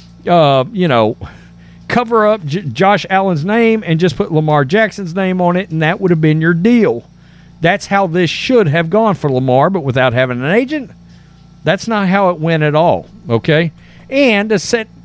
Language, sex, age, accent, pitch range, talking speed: English, male, 50-69, American, 130-215 Hz, 185 wpm